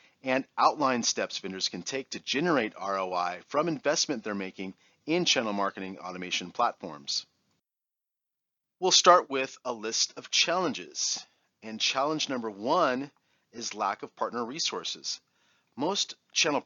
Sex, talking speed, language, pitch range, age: male, 130 wpm, English, 100-135 Hz, 40-59